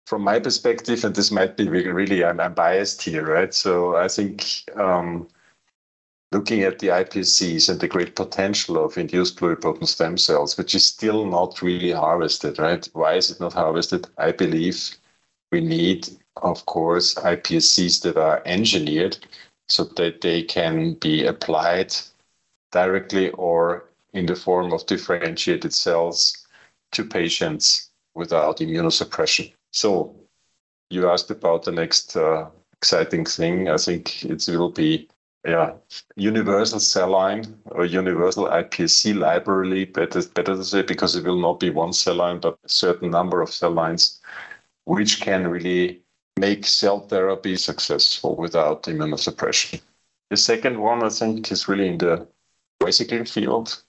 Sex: male